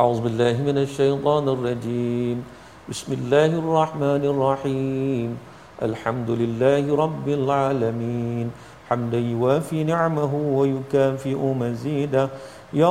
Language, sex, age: Malayalam, male, 50-69